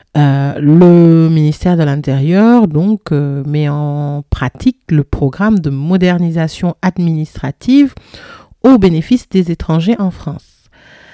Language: French